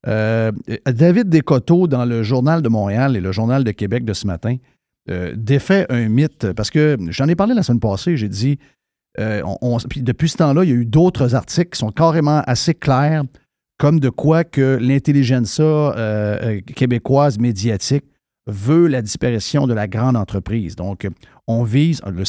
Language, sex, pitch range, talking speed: French, male, 115-150 Hz, 170 wpm